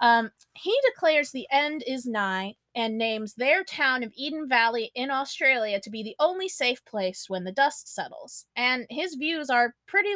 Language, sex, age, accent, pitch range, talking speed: English, female, 20-39, American, 220-300 Hz, 185 wpm